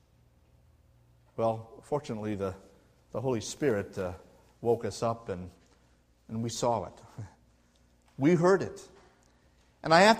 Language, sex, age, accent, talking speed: English, male, 50-69, American, 125 wpm